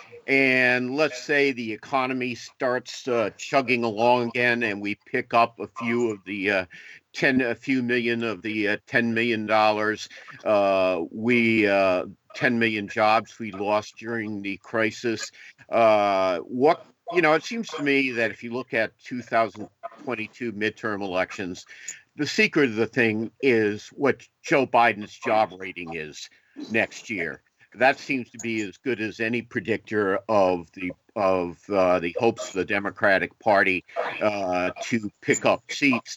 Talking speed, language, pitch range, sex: 160 wpm, English, 105-120 Hz, male